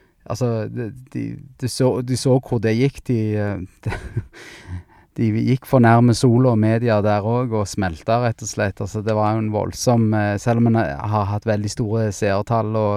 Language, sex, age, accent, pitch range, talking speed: English, male, 20-39, Norwegian, 100-115 Hz, 170 wpm